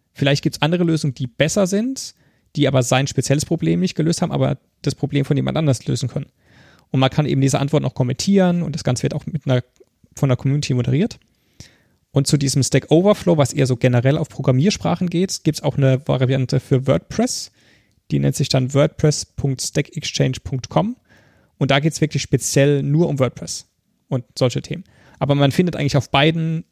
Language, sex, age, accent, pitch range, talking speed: German, male, 30-49, German, 130-150 Hz, 195 wpm